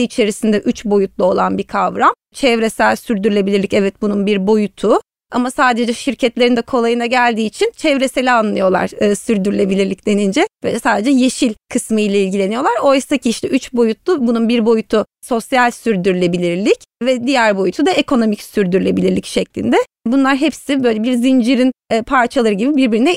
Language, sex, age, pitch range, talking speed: Turkish, female, 30-49, 225-270 Hz, 140 wpm